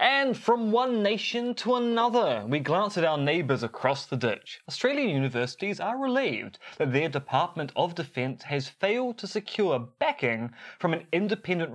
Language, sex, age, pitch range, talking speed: English, male, 20-39, 135-215 Hz, 160 wpm